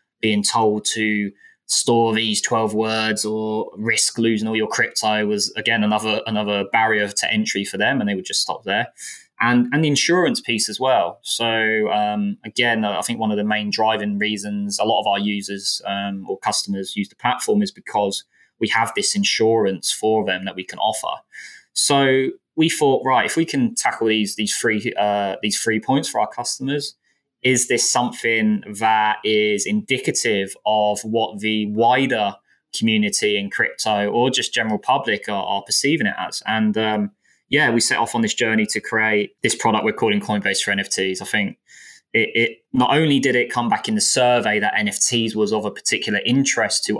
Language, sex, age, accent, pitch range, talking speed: English, male, 20-39, British, 105-120 Hz, 190 wpm